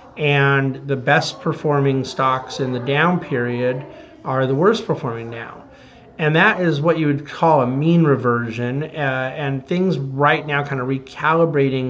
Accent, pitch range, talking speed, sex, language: American, 130-160 Hz, 160 wpm, male, English